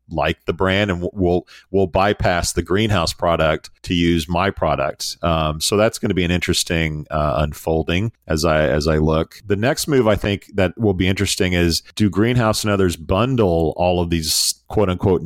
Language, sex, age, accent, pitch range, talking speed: English, male, 40-59, American, 80-100 Hz, 190 wpm